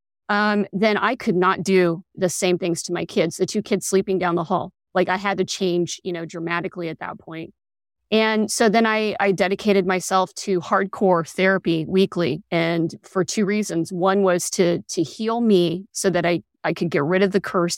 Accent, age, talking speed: American, 30-49, 205 wpm